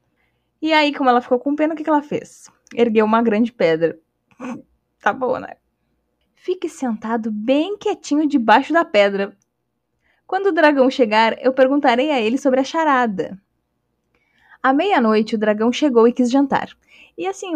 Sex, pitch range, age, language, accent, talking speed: female, 210-300 Hz, 10-29, Portuguese, Brazilian, 155 wpm